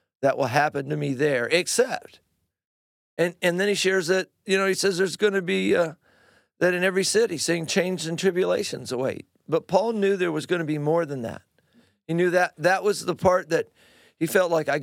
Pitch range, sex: 140-175 Hz, male